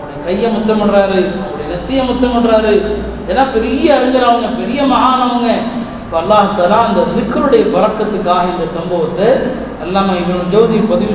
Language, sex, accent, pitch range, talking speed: Tamil, male, native, 200-240 Hz, 115 wpm